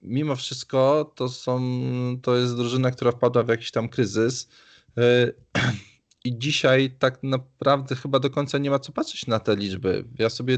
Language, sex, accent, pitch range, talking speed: Polish, male, native, 115-140 Hz, 165 wpm